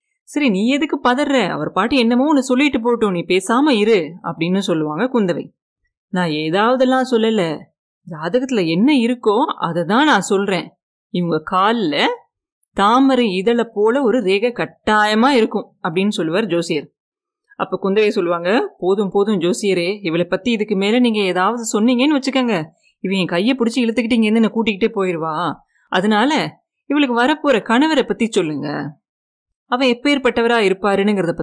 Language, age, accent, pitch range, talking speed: Tamil, 30-49, native, 180-250 Hz, 130 wpm